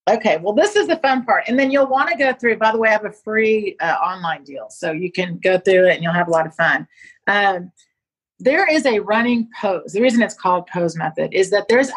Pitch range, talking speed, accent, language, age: 195-250 Hz, 260 wpm, American, English, 40-59